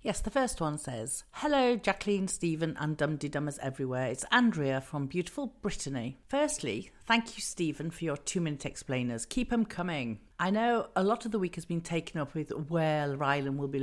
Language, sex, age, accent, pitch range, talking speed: English, female, 50-69, British, 145-210 Hz, 190 wpm